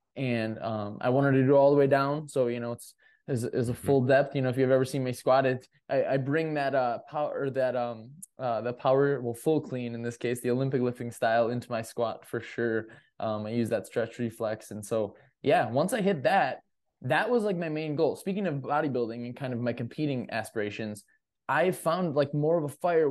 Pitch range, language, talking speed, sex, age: 120-145 Hz, English, 230 wpm, male, 20-39